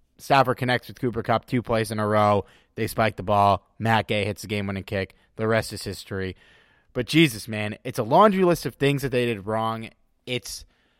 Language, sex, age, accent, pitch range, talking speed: English, male, 30-49, American, 115-150 Hz, 205 wpm